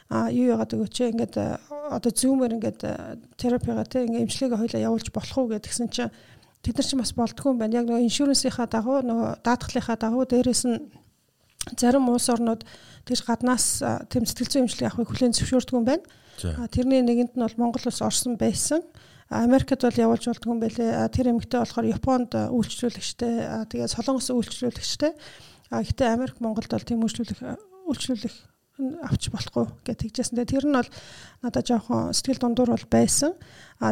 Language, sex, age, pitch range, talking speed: English, female, 40-59, 225-260 Hz, 120 wpm